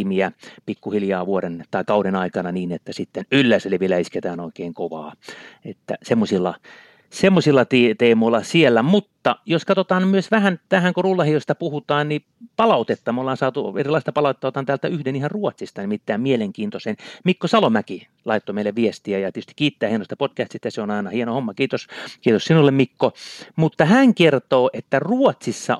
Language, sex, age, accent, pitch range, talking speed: Finnish, male, 30-49, native, 115-180 Hz, 155 wpm